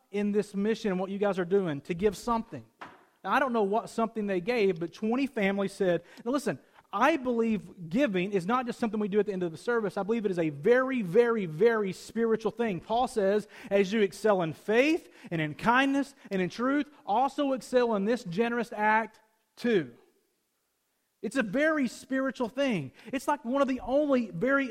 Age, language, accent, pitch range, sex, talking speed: 30-49, English, American, 200-255 Hz, male, 195 wpm